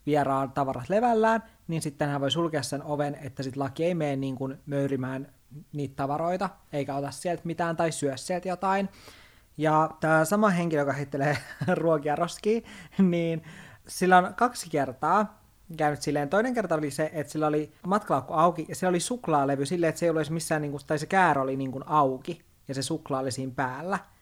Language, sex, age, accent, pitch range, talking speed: Finnish, male, 20-39, native, 135-170 Hz, 180 wpm